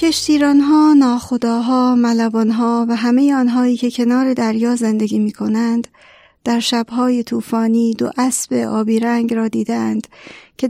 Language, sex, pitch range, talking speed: Persian, female, 225-245 Hz, 135 wpm